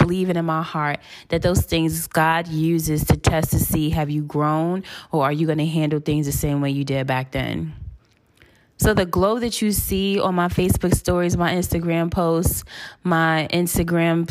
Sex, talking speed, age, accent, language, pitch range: female, 190 wpm, 20-39, American, English, 150-170 Hz